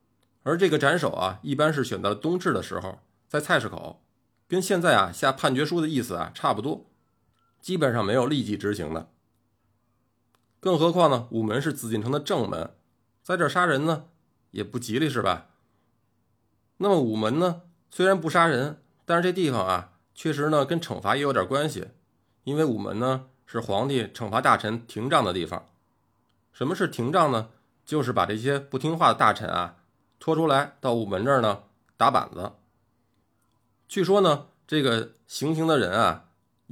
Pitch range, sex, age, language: 110-150 Hz, male, 20-39, Chinese